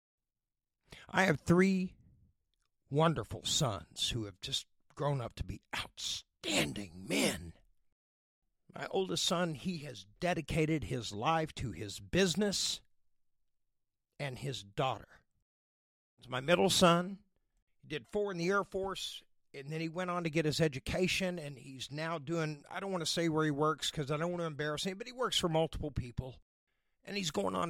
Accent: American